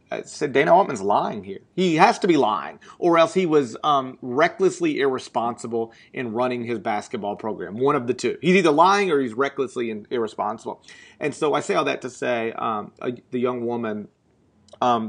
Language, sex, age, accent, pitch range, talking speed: English, male, 30-49, American, 115-135 Hz, 195 wpm